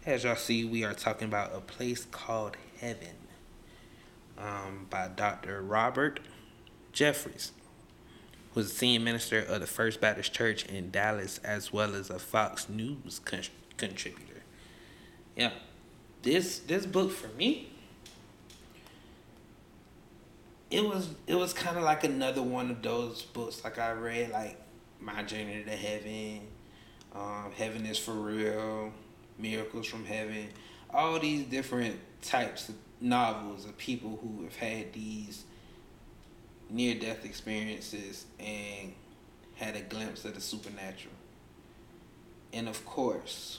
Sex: male